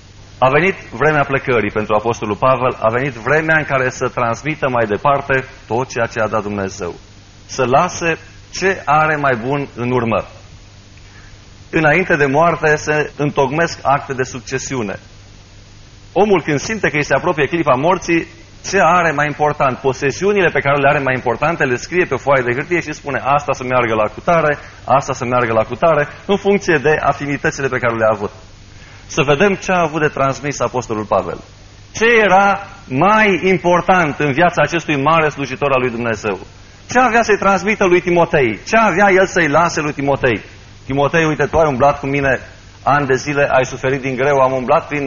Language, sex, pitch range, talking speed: Romanian, male, 115-155 Hz, 180 wpm